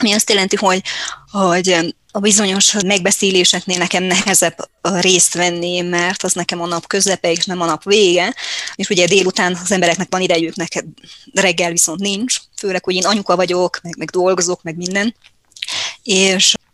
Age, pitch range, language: 20-39, 170-195 Hz, Hungarian